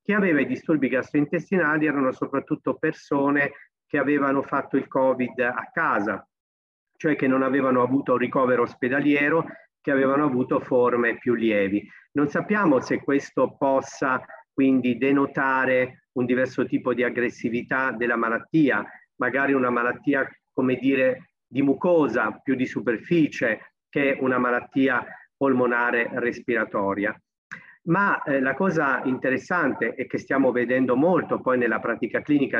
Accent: native